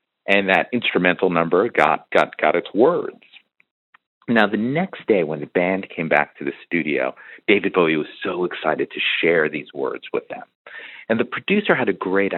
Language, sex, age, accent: English, male, 40-59, American